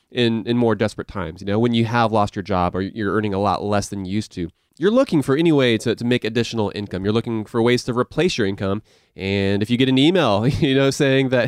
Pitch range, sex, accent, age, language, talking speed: 110-140 Hz, male, American, 30-49, English, 265 wpm